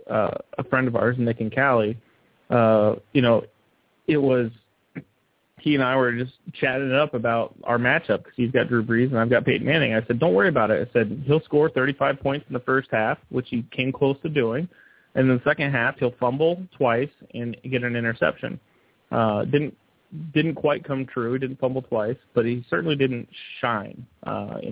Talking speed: 205 wpm